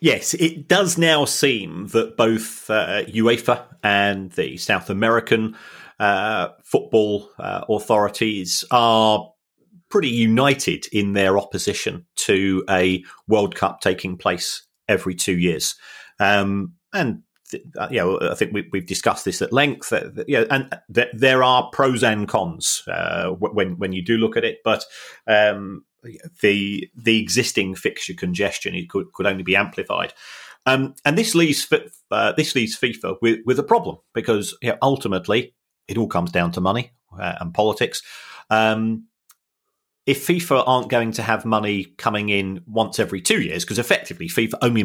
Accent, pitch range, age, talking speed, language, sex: British, 95-125 Hz, 30-49, 160 wpm, English, male